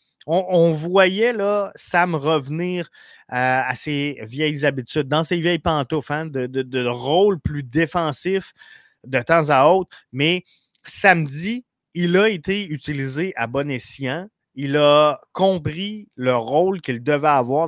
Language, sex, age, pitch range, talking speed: French, male, 30-49, 130-175 Hz, 145 wpm